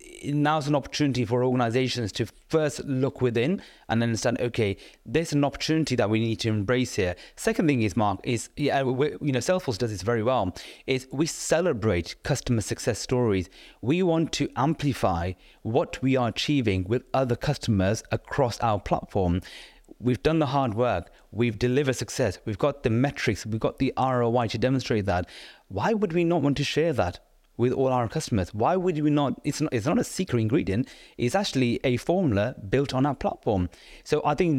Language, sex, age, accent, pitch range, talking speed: English, male, 30-49, British, 110-140 Hz, 185 wpm